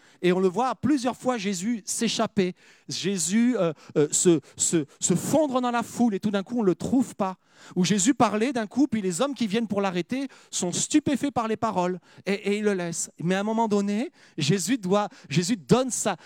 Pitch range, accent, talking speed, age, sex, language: 190-275 Hz, French, 220 wpm, 40-59, male, French